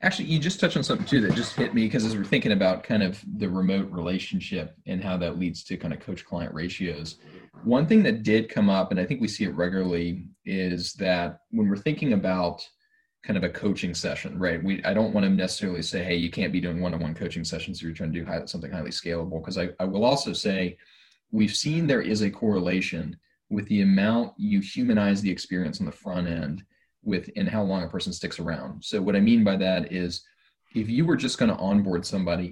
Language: English